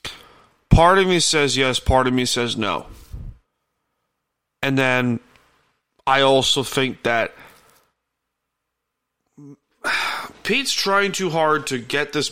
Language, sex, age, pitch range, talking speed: English, male, 30-49, 120-145 Hz, 110 wpm